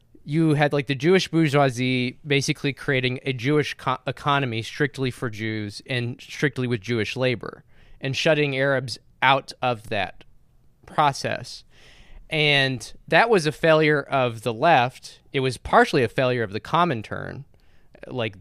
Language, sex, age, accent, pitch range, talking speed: English, male, 20-39, American, 115-150 Hz, 145 wpm